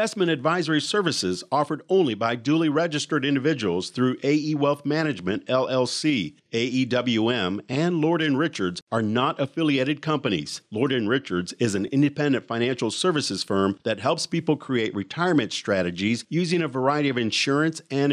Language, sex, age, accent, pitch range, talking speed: English, male, 50-69, American, 115-150 Hz, 140 wpm